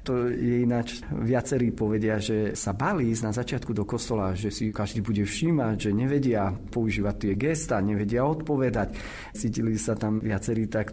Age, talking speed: 40-59, 165 wpm